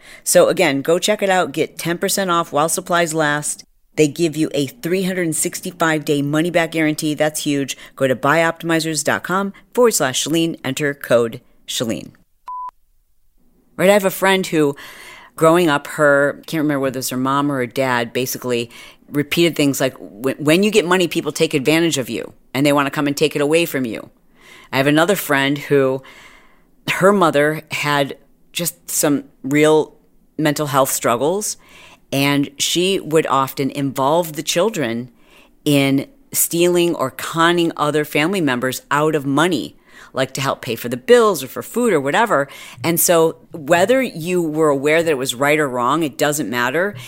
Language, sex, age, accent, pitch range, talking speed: English, female, 40-59, American, 140-170 Hz, 170 wpm